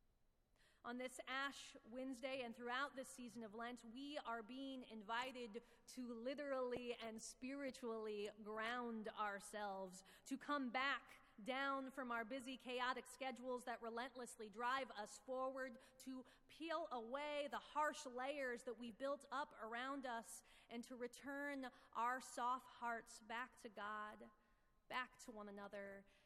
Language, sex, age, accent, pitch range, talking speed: English, female, 30-49, American, 215-255 Hz, 135 wpm